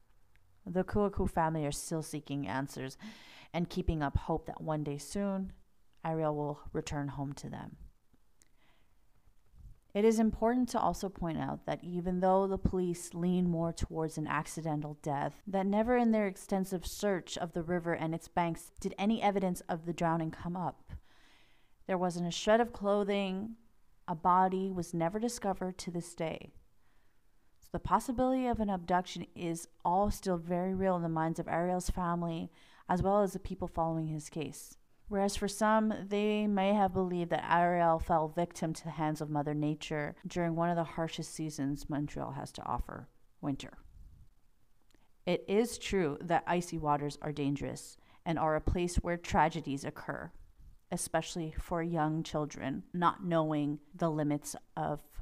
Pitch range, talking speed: 155-190 Hz, 160 wpm